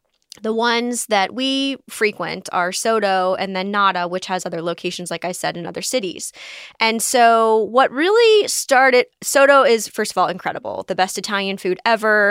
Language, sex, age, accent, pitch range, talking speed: English, female, 20-39, American, 185-240 Hz, 175 wpm